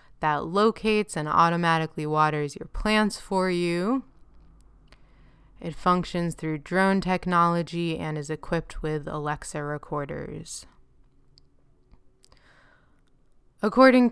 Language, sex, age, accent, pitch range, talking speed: English, female, 20-39, American, 155-190 Hz, 90 wpm